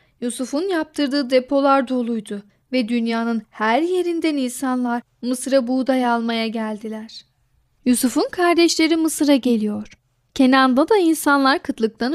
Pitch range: 230-300 Hz